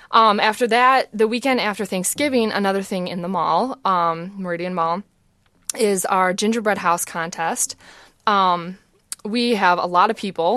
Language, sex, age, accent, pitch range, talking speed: English, female, 20-39, American, 175-210 Hz, 155 wpm